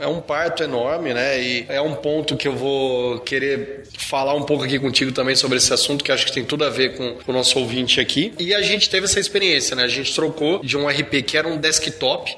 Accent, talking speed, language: Brazilian, 250 wpm, Portuguese